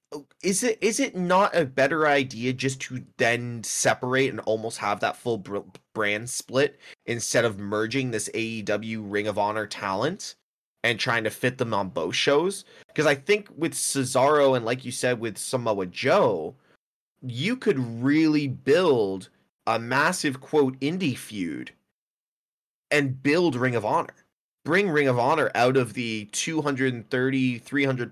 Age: 20-39